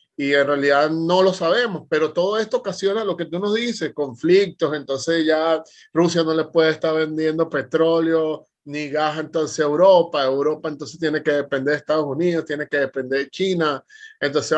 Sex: male